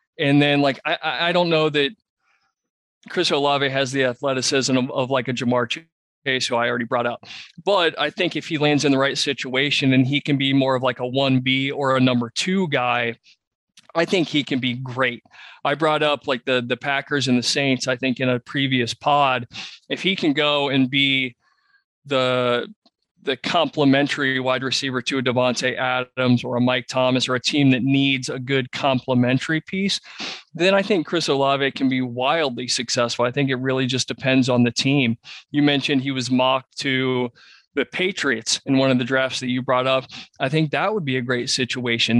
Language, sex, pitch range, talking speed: English, male, 125-145 Hz, 200 wpm